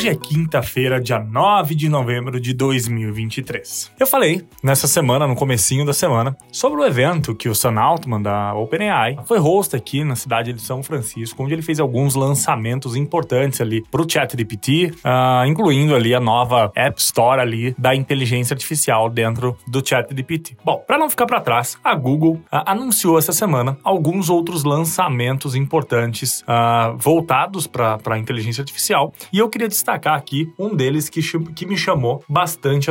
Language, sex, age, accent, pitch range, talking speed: Portuguese, male, 20-39, Brazilian, 125-165 Hz, 175 wpm